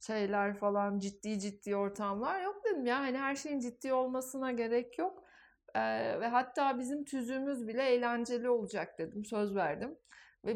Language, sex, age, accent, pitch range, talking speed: Turkish, female, 60-79, native, 215-275 Hz, 155 wpm